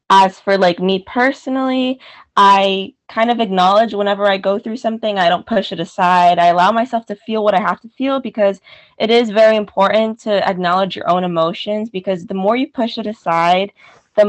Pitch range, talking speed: 175-215 Hz, 195 wpm